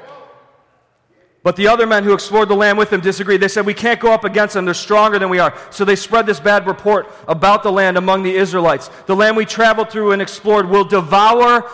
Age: 40-59